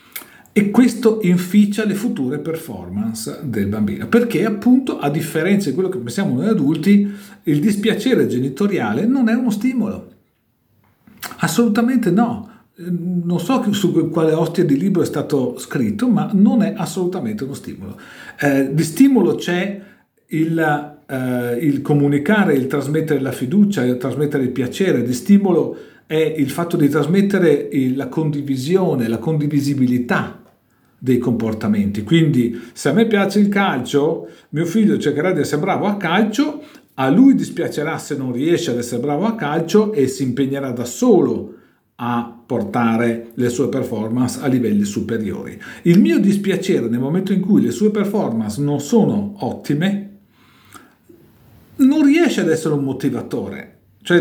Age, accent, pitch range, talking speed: 50-69, native, 135-205 Hz, 145 wpm